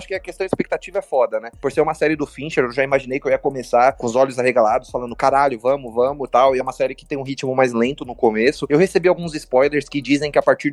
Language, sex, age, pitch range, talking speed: Portuguese, male, 20-39, 125-155 Hz, 295 wpm